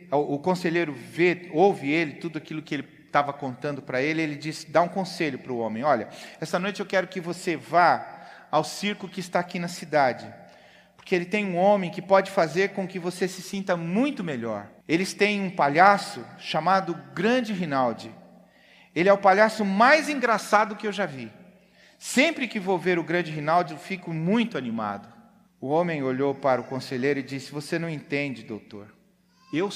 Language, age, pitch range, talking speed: Portuguese, 40-59, 130-190 Hz, 185 wpm